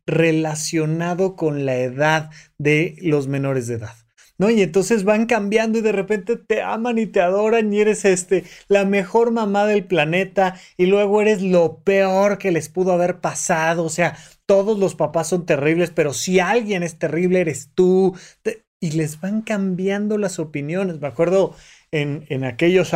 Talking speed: 165 wpm